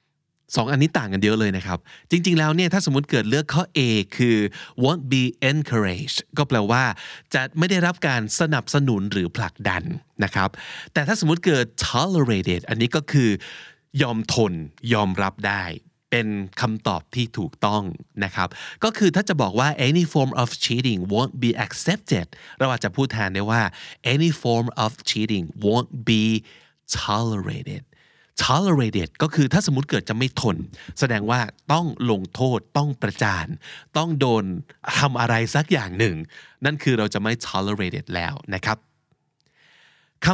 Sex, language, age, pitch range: male, Thai, 20-39, 105-150 Hz